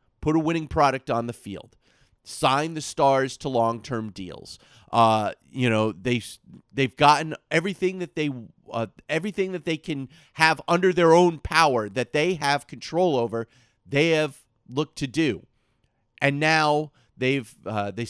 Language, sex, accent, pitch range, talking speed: English, male, American, 115-155 Hz, 155 wpm